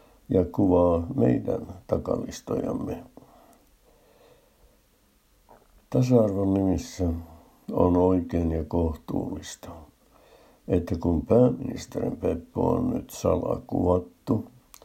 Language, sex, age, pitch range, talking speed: Finnish, male, 60-79, 85-100 Hz, 70 wpm